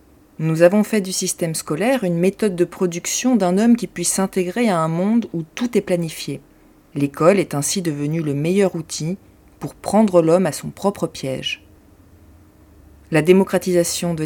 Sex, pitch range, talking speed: female, 155-190 Hz, 165 wpm